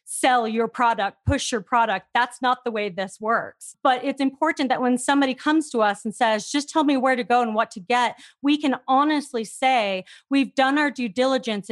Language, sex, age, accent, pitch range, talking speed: English, female, 30-49, American, 220-260 Hz, 215 wpm